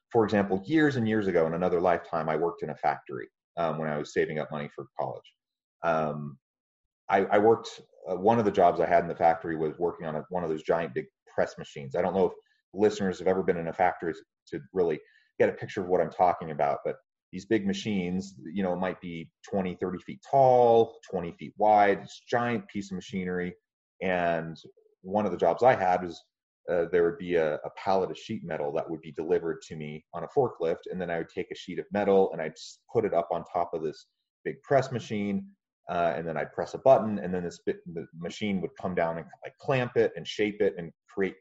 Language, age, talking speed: English, 30-49, 230 wpm